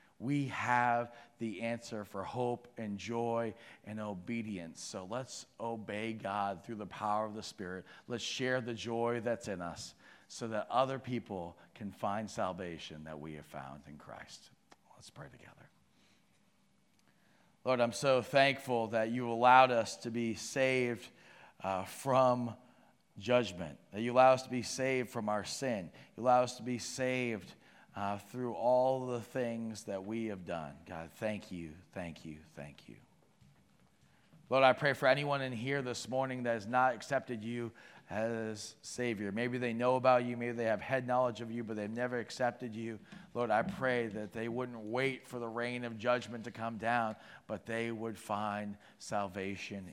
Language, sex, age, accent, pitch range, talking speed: English, male, 40-59, American, 105-125 Hz, 170 wpm